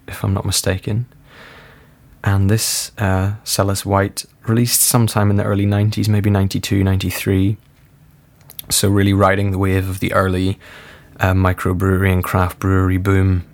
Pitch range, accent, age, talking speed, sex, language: 95-110 Hz, British, 20-39, 140 wpm, male, English